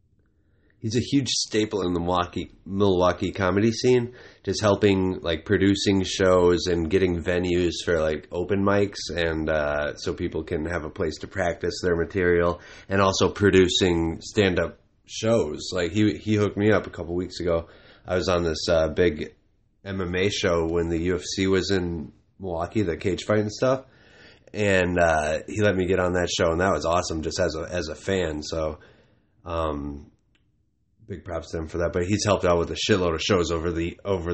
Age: 30-49